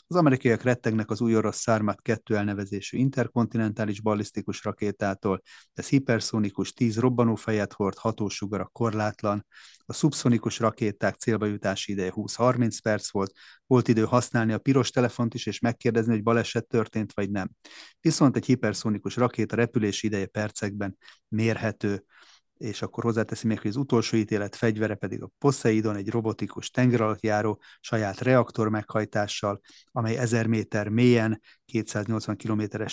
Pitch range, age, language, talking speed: 105-120 Hz, 30-49, Hungarian, 135 wpm